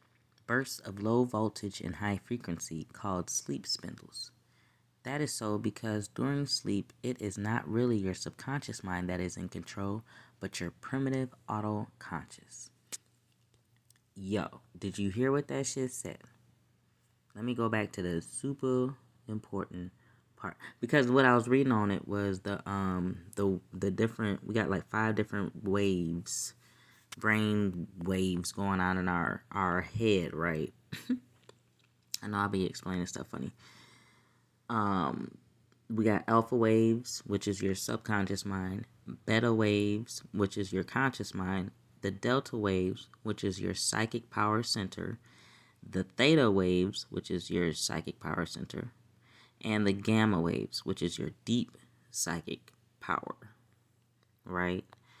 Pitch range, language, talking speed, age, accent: 95-120 Hz, English, 140 wpm, 20-39, American